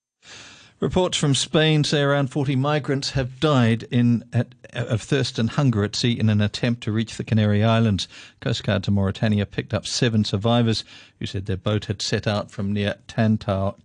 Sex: male